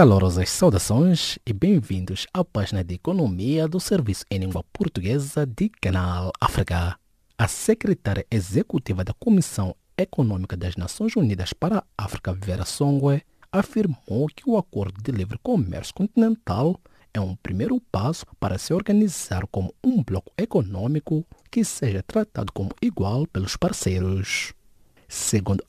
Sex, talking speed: male, 135 wpm